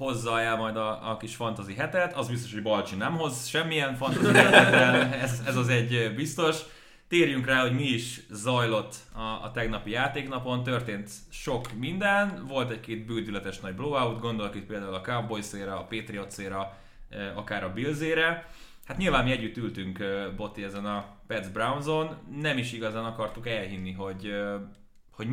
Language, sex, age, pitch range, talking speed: Hungarian, male, 30-49, 100-130 Hz, 155 wpm